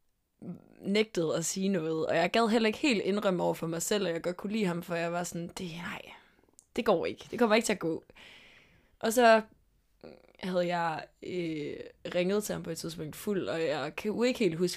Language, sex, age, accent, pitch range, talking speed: Danish, female, 20-39, native, 165-205 Hz, 225 wpm